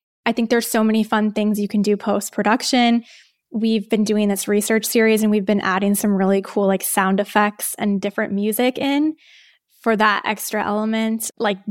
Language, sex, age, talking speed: English, female, 20-39, 190 wpm